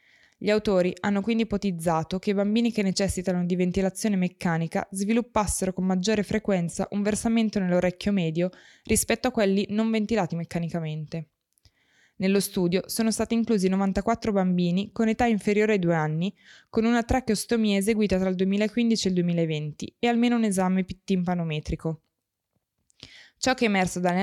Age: 20-39